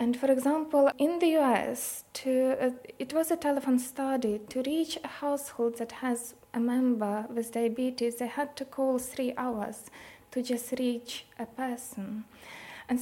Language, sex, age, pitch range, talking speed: English, female, 20-39, 235-265 Hz, 155 wpm